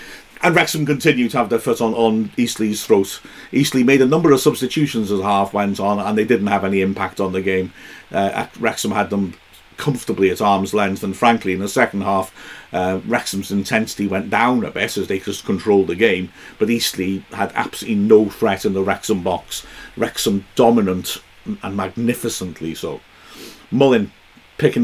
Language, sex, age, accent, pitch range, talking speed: English, male, 50-69, British, 100-125 Hz, 180 wpm